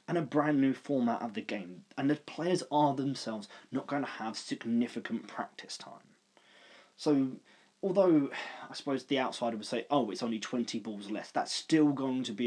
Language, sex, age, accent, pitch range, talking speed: English, male, 20-39, British, 110-150 Hz, 190 wpm